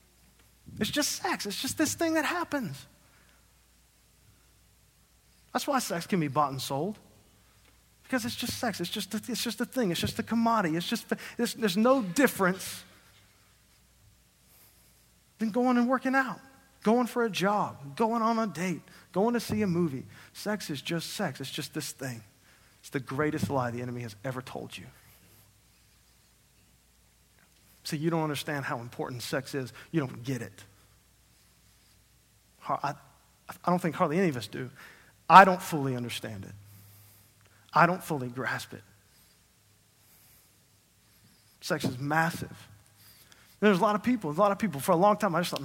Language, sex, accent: English, male, American